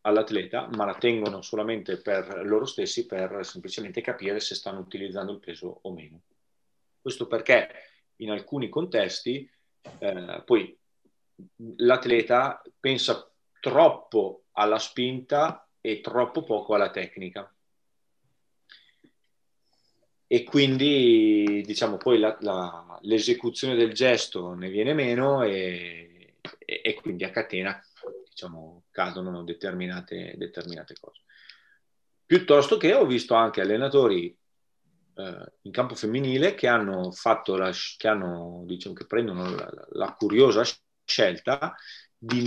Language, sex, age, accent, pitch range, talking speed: Italian, male, 30-49, native, 95-130 Hz, 115 wpm